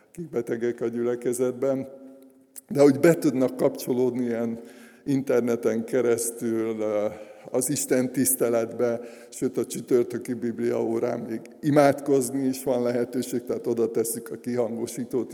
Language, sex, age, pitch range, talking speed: Hungarian, male, 50-69, 115-135 Hz, 115 wpm